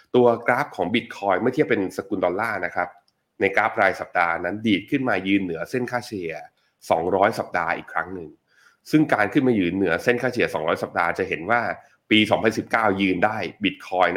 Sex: male